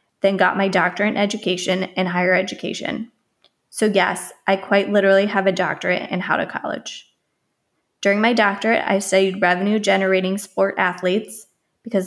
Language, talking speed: English, 150 wpm